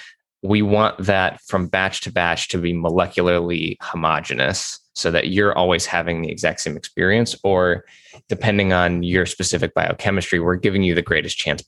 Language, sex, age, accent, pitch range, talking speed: English, male, 20-39, American, 80-95 Hz, 165 wpm